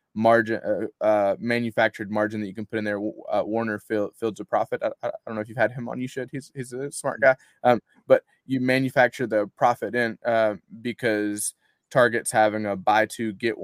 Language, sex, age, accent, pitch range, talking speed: English, male, 20-39, American, 105-120 Hz, 210 wpm